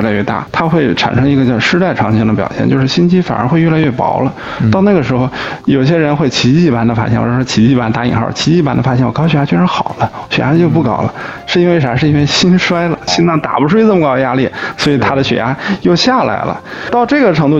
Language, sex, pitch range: Chinese, male, 120-165 Hz